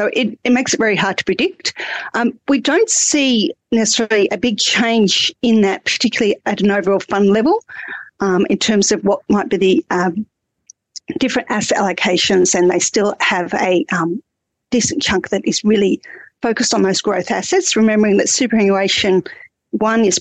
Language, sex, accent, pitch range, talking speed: English, female, Australian, 195-245 Hz, 170 wpm